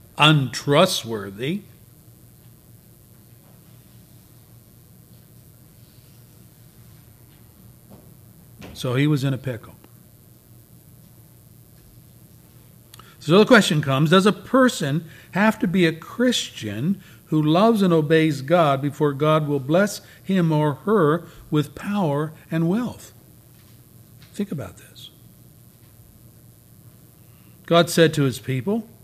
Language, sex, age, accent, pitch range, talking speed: English, male, 60-79, American, 130-210 Hz, 90 wpm